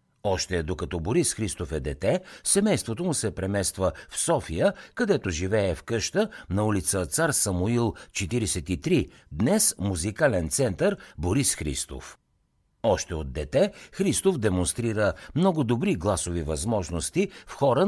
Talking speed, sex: 125 wpm, male